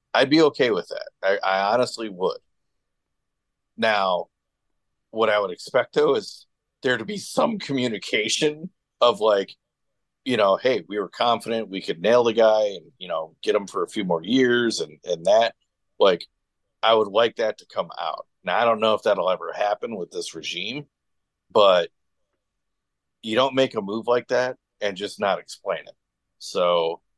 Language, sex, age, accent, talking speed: English, male, 40-59, American, 175 wpm